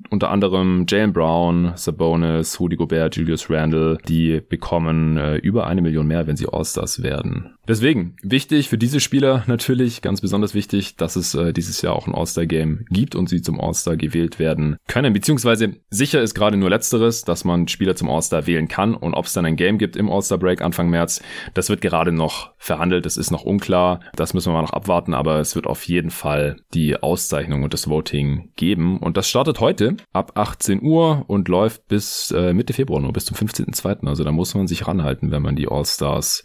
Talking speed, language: 200 wpm, German